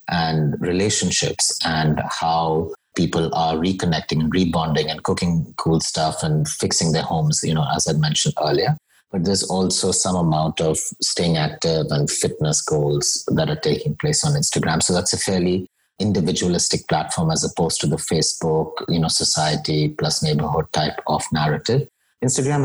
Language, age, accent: English, 30-49, Indian